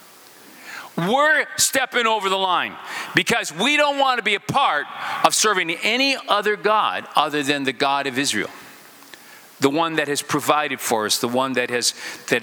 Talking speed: 175 wpm